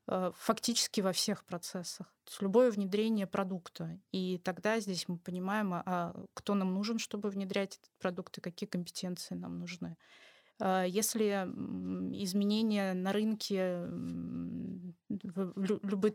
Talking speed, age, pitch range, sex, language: 110 wpm, 20-39, 180-205 Hz, female, Russian